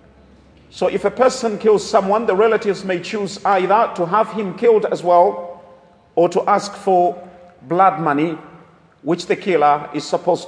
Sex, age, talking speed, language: male, 40-59, 160 wpm, English